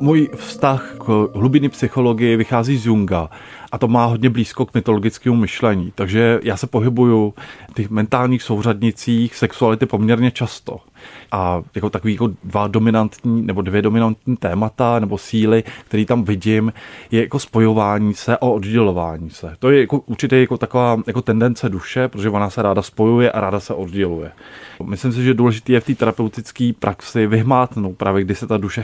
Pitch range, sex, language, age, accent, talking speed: 100-120 Hz, male, Czech, 20-39, native, 170 wpm